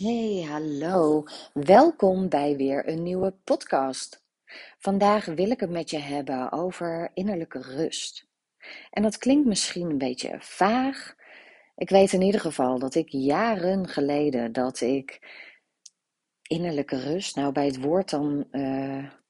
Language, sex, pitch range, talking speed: Dutch, female, 135-195 Hz, 135 wpm